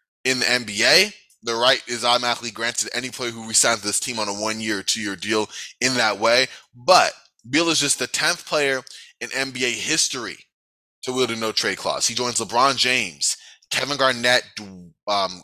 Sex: male